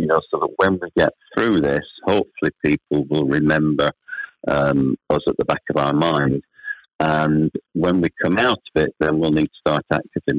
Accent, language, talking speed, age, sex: British, English, 195 wpm, 50-69, male